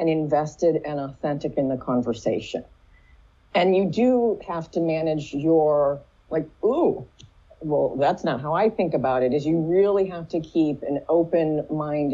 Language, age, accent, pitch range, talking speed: English, 40-59, American, 150-195 Hz, 165 wpm